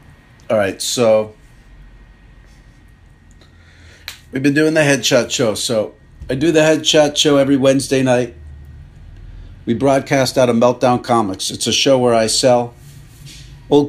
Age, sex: 50-69, male